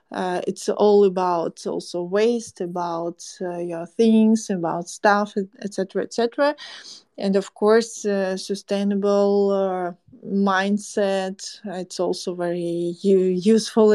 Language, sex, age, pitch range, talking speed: English, female, 20-39, 195-240 Hz, 110 wpm